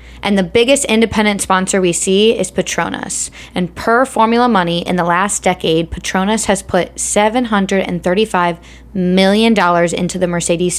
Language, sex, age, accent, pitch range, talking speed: English, female, 20-39, American, 180-220 Hz, 140 wpm